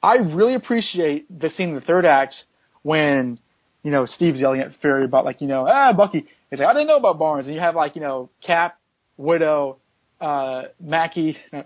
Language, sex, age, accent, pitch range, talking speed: English, male, 30-49, American, 150-205 Hz, 200 wpm